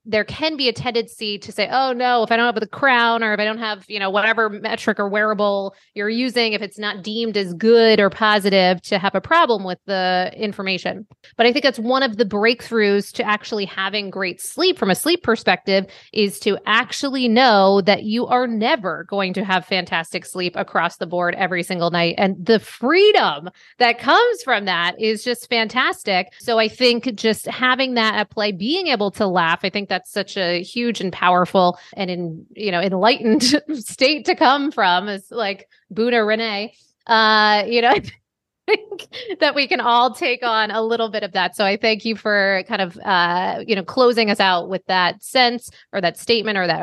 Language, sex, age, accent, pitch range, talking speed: English, female, 30-49, American, 195-240 Hz, 205 wpm